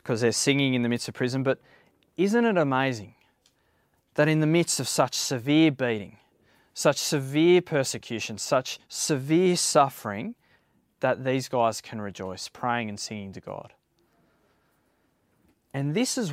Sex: male